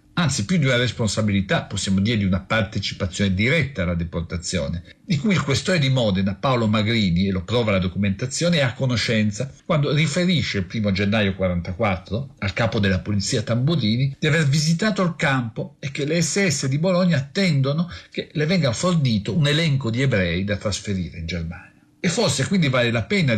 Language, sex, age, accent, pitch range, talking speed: Italian, male, 50-69, native, 100-150 Hz, 180 wpm